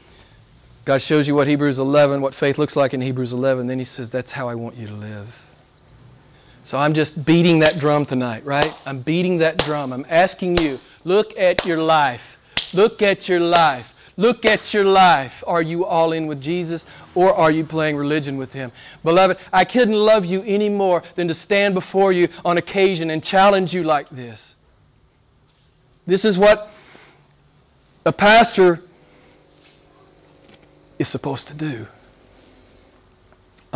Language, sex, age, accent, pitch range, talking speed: English, male, 40-59, American, 125-170 Hz, 160 wpm